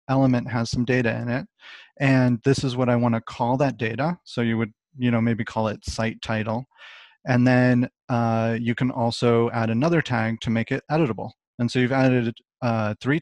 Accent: American